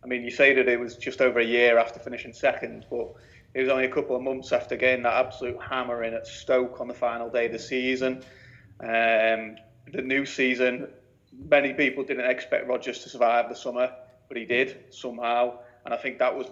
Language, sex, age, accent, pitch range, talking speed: English, male, 30-49, British, 120-135 Hz, 215 wpm